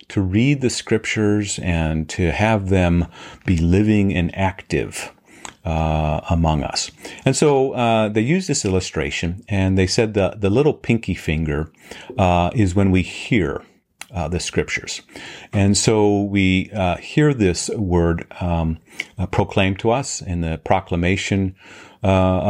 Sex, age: male, 40-59